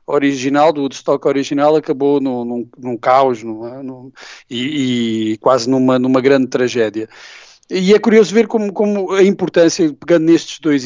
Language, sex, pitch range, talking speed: Portuguese, male, 135-165 Hz, 160 wpm